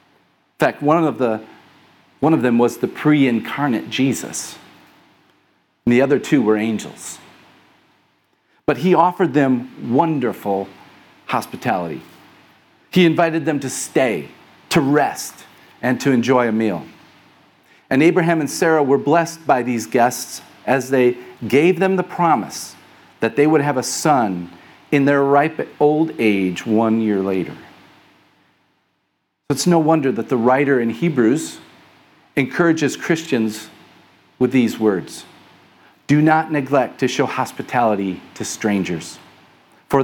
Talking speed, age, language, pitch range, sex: 130 wpm, 40-59, English, 115-155 Hz, male